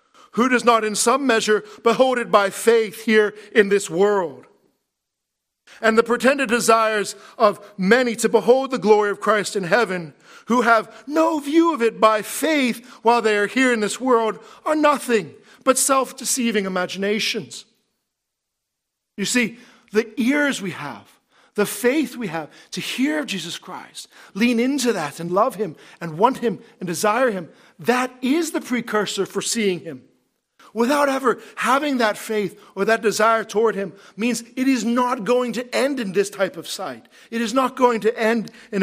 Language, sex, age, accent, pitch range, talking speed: English, male, 50-69, American, 200-245 Hz, 170 wpm